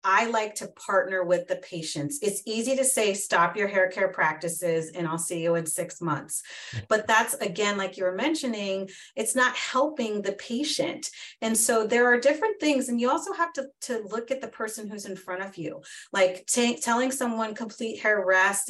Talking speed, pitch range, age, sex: 200 wpm, 175-230 Hz, 30-49, female